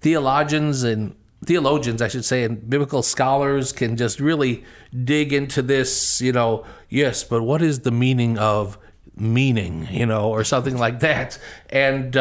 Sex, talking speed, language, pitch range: male, 155 wpm, English, 120-145 Hz